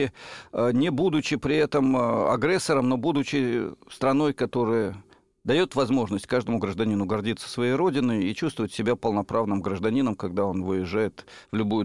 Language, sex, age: Russian, male, 50-69